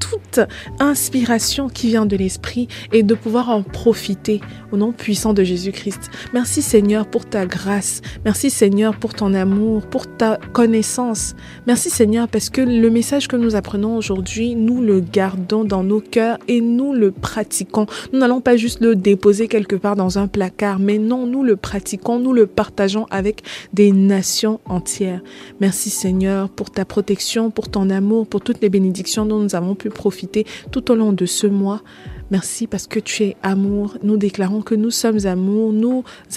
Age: 20-39